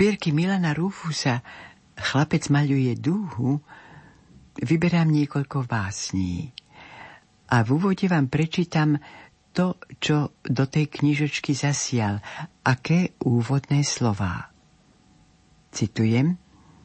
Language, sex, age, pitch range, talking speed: Slovak, female, 60-79, 115-150 Hz, 85 wpm